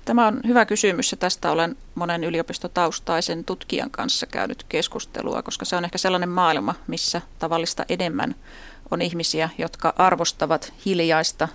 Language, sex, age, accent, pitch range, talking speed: Finnish, female, 30-49, native, 165-190 Hz, 140 wpm